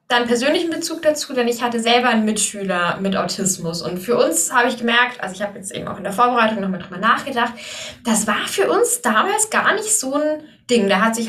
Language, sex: German, female